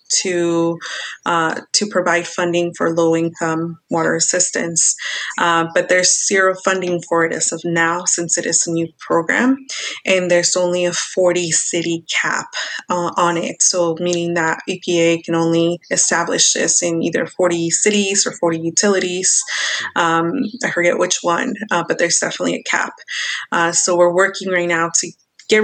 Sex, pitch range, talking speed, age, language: female, 170-190 Hz, 165 wpm, 20-39, English